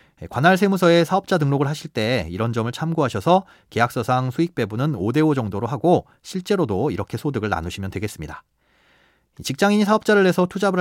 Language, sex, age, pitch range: Korean, male, 30-49, 115-170 Hz